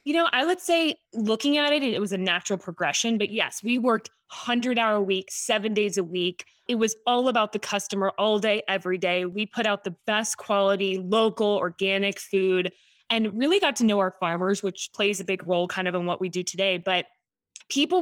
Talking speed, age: 215 wpm, 20-39